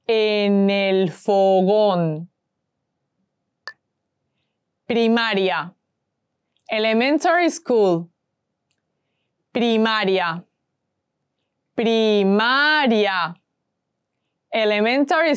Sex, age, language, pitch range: female, 20-39, English, 185-250 Hz